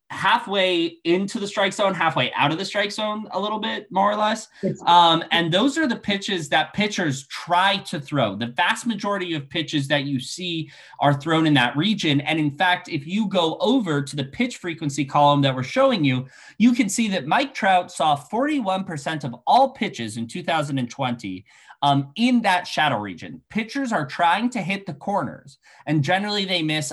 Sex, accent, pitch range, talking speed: male, American, 140-195 Hz, 195 wpm